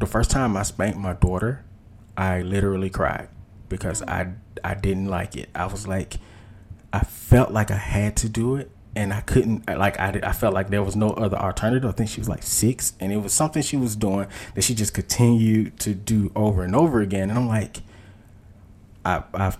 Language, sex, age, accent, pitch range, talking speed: English, male, 20-39, American, 95-115 Hz, 210 wpm